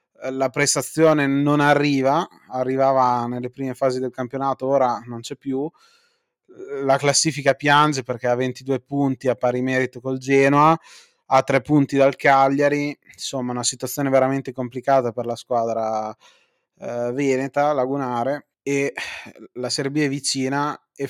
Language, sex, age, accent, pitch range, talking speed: Italian, male, 30-49, native, 130-145 Hz, 135 wpm